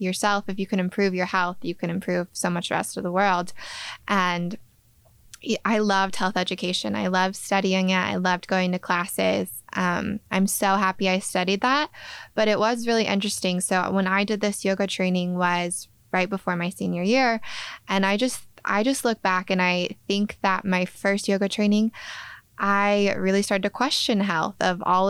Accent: American